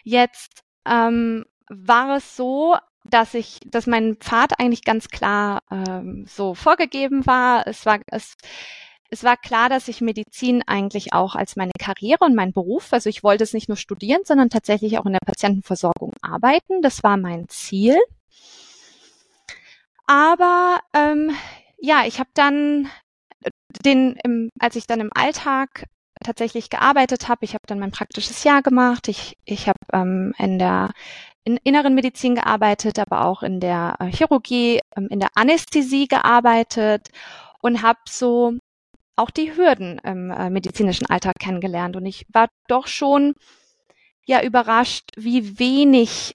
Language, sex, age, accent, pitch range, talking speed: German, female, 20-39, German, 205-265 Hz, 145 wpm